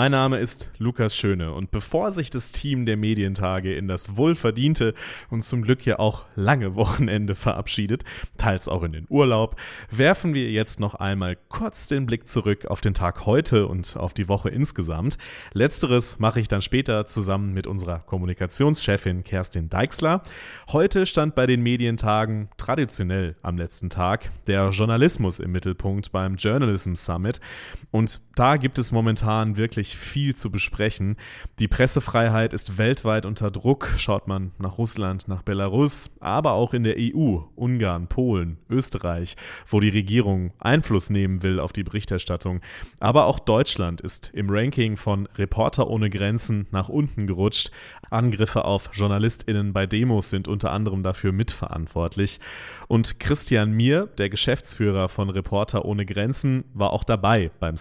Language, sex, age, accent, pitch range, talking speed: German, male, 30-49, German, 95-120 Hz, 155 wpm